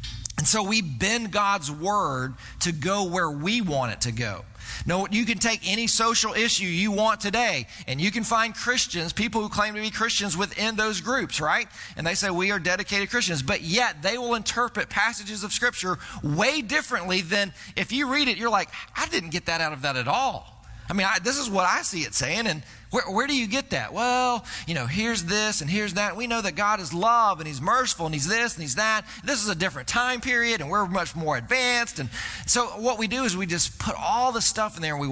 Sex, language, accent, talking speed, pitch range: male, English, American, 235 wpm, 170-240 Hz